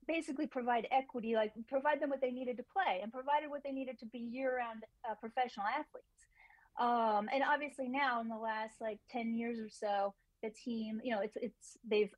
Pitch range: 210-250 Hz